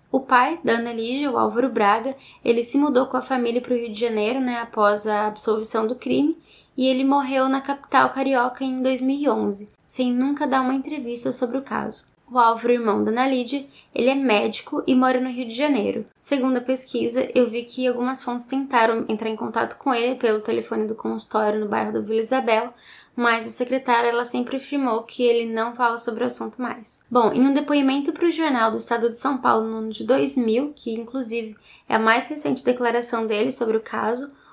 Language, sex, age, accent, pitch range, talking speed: Portuguese, female, 10-29, Brazilian, 225-260 Hz, 205 wpm